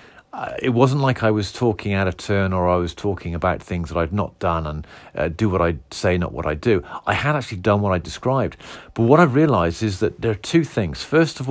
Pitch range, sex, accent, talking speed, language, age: 95-125 Hz, male, British, 255 wpm, English, 50-69